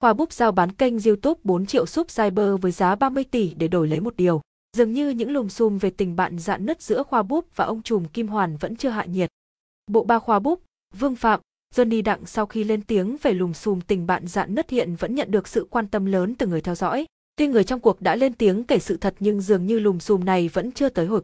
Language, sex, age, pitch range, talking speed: Vietnamese, female, 20-39, 185-235 Hz, 260 wpm